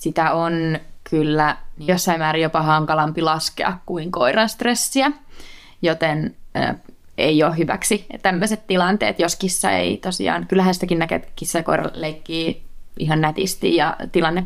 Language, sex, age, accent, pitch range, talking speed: Finnish, female, 20-39, native, 165-190 Hz, 135 wpm